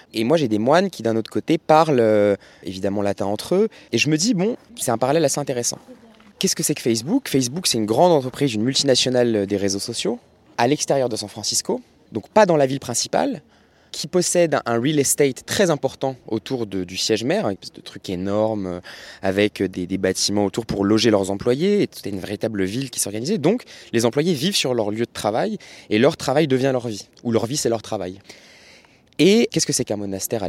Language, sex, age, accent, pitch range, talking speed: French, male, 20-39, French, 100-135 Hz, 220 wpm